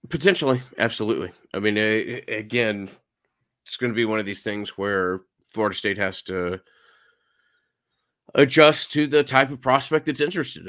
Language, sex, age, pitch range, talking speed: English, male, 30-49, 90-115 Hz, 155 wpm